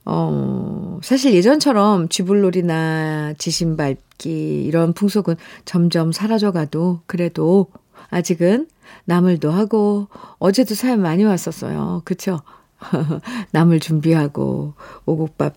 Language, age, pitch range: Korean, 50-69, 160-205 Hz